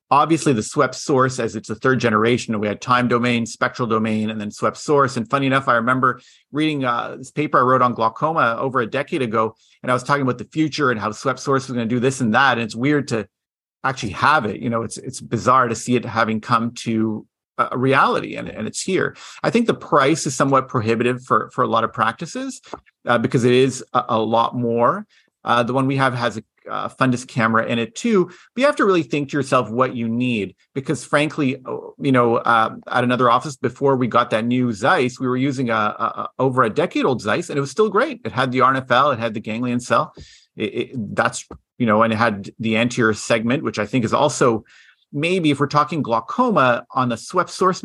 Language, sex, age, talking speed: English, male, 40-59, 230 wpm